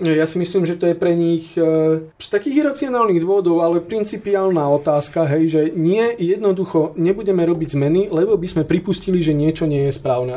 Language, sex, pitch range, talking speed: Slovak, male, 140-170 Hz, 185 wpm